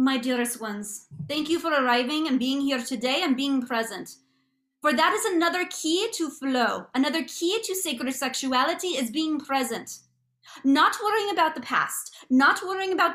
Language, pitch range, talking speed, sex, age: English, 245-315 Hz, 170 wpm, female, 30-49